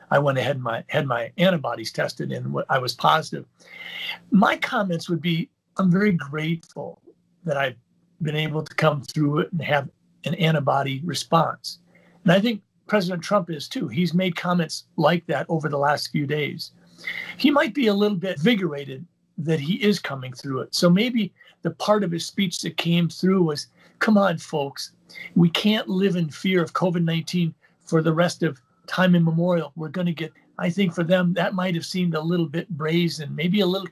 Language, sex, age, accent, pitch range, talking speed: English, male, 50-69, American, 160-185 Hz, 195 wpm